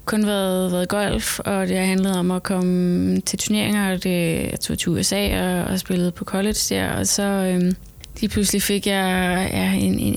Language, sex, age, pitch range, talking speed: Danish, female, 20-39, 180-200 Hz, 200 wpm